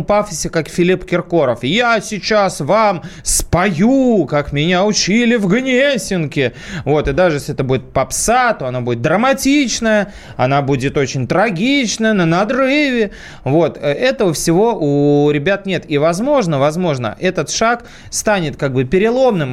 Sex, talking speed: male, 140 wpm